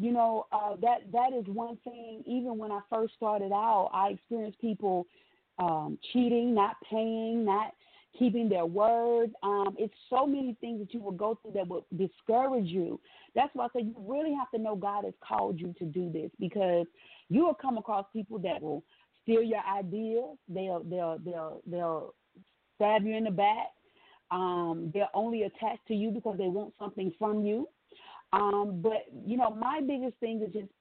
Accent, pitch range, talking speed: American, 195-235 Hz, 190 wpm